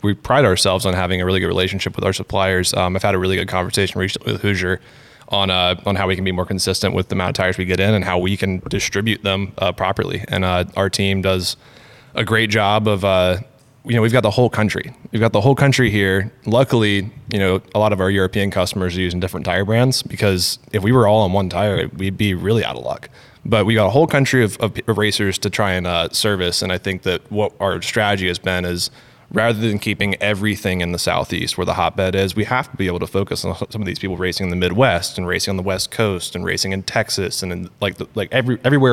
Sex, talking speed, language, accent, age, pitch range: male, 255 wpm, English, American, 20-39, 95-110 Hz